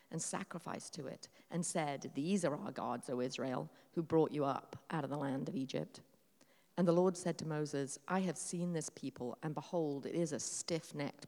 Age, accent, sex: 40-59, British, female